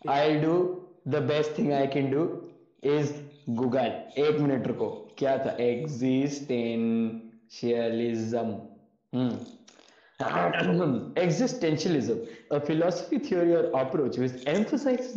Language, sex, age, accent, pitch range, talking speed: Hindi, male, 20-39, native, 130-165 Hz, 110 wpm